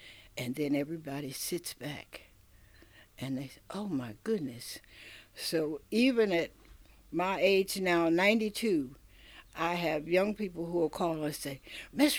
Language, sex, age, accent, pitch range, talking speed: English, female, 60-79, American, 145-205 Hz, 140 wpm